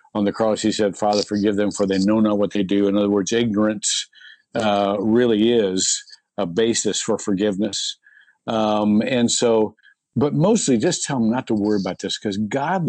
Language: English